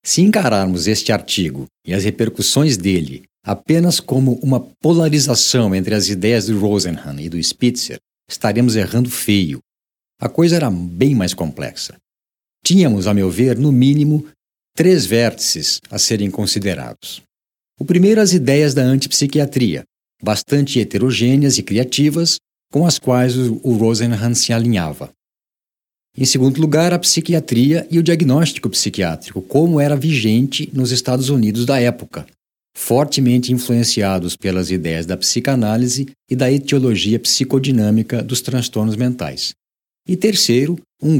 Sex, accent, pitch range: male, Brazilian, 110-145 Hz